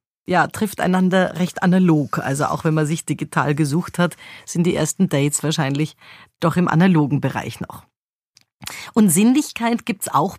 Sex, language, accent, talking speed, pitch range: female, German, German, 160 wpm, 165-210 Hz